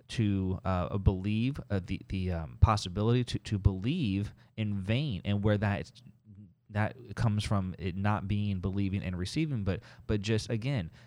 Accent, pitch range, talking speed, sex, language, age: American, 95-120 Hz, 155 wpm, male, English, 30-49